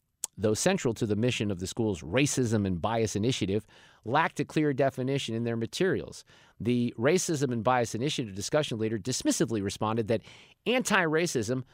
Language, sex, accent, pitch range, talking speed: English, male, American, 110-155 Hz, 155 wpm